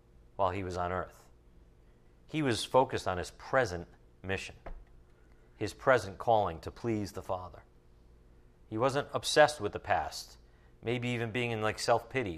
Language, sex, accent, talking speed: English, male, American, 150 wpm